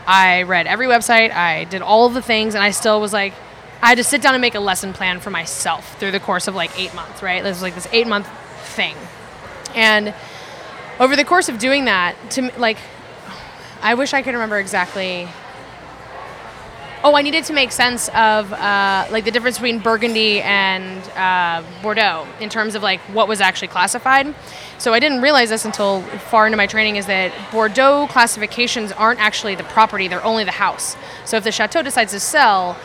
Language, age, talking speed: English, 10-29, 200 wpm